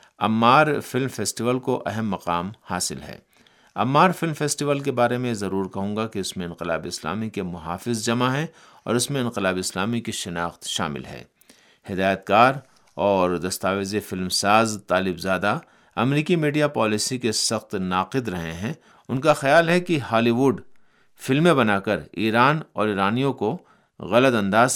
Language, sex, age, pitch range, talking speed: Urdu, male, 50-69, 95-130 Hz, 160 wpm